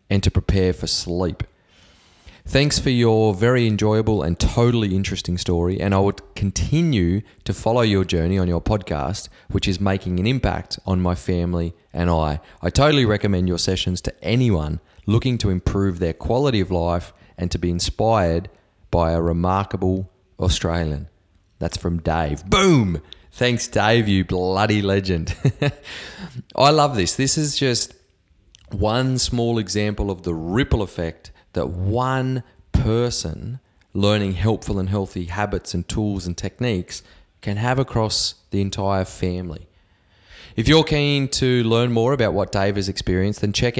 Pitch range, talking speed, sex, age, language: 90-110 Hz, 150 wpm, male, 30-49, English